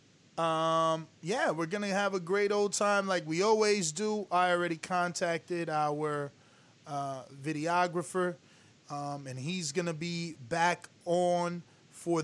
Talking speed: 130 wpm